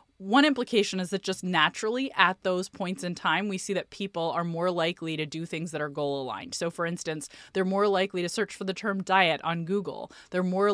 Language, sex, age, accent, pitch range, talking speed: English, female, 20-39, American, 165-200 Hz, 230 wpm